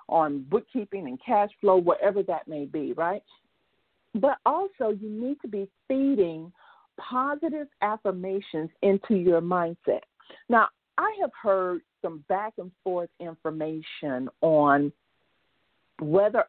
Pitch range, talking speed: 165-225 Hz, 115 wpm